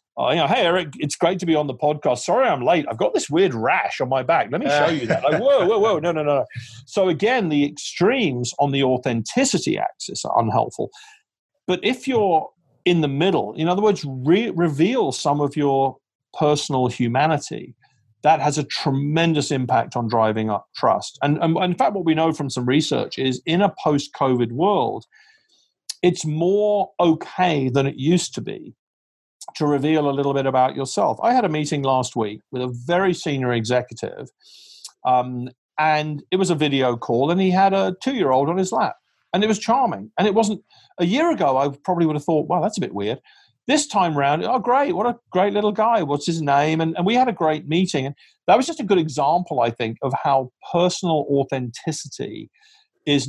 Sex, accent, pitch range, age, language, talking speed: male, British, 135-185 Hz, 40-59, English, 200 wpm